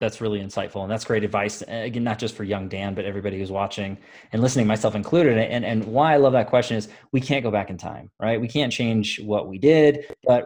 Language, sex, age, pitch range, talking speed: English, male, 20-39, 105-130 Hz, 245 wpm